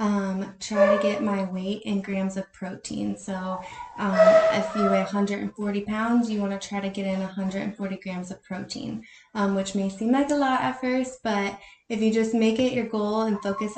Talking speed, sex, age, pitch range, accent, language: 205 wpm, female, 20-39, 200-230 Hz, American, English